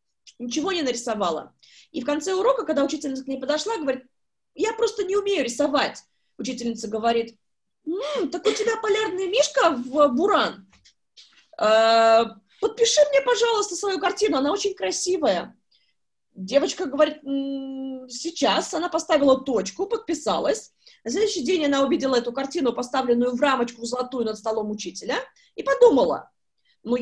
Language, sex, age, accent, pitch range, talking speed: Russian, female, 20-39, native, 255-335 Hz, 135 wpm